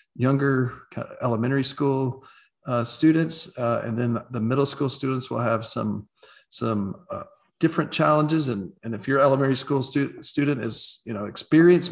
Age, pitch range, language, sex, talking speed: 40-59, 115-145 Hz, English, male, 155 wpm